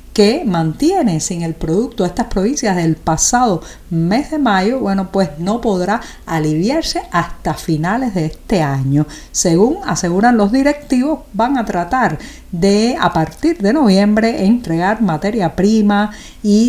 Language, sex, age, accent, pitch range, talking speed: Spanish, female, 50-69, American, 170-230 Hz, 135 wpm